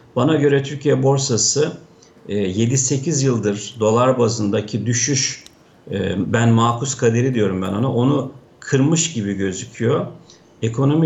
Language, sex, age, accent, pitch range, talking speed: Turkish, male, 50-69, native, 110-140 Hz, 110 wpm